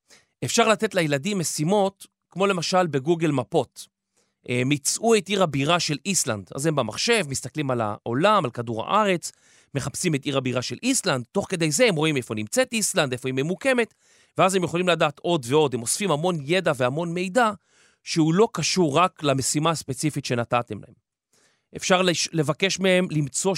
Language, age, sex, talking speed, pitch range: Hebrew, 30-49, male, 165 wpm, 135-185 Hz